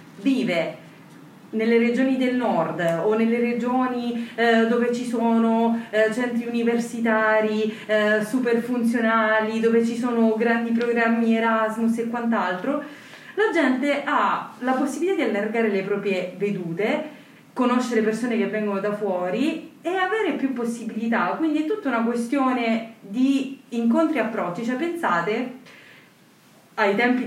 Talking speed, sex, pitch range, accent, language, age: 130 wpm, female, 205-250 Hz, native, Italian, 30-49